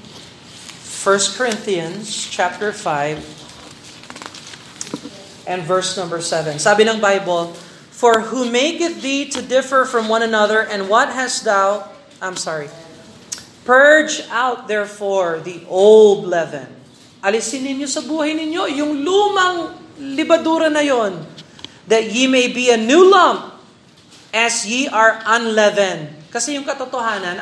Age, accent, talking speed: 40-59, native, 125 wpm